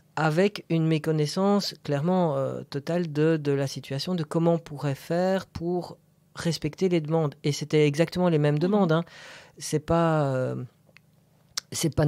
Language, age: French, 40-59